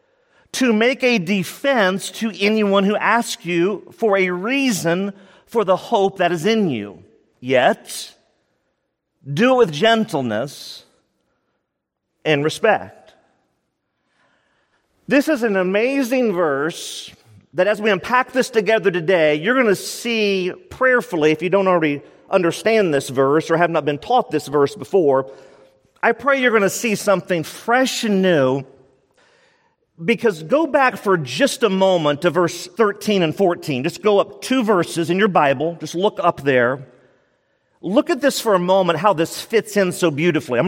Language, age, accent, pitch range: English, 40-59, American, 165-230 Hz